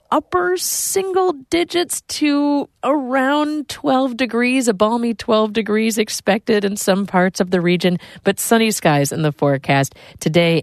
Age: 40-59